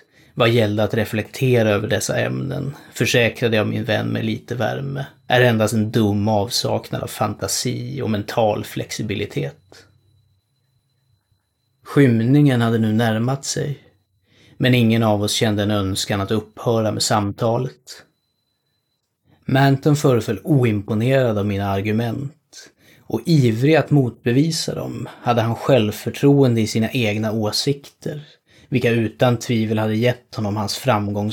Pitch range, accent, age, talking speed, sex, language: 110-130 Hz, native, 30-49, 125 wpm, male, Swedish